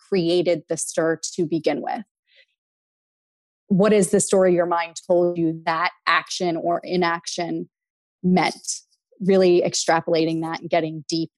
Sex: female